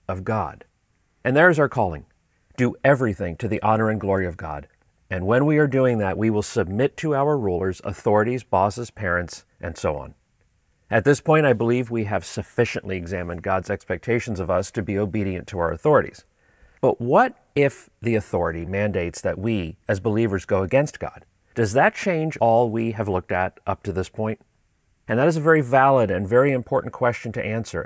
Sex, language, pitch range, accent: male, English, 95-120 Hz, American